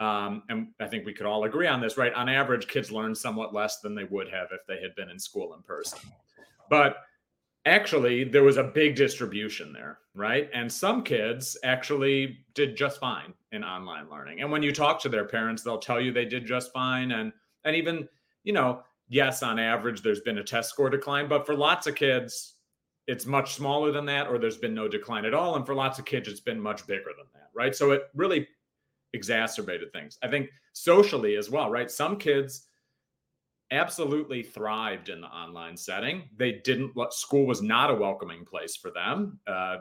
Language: English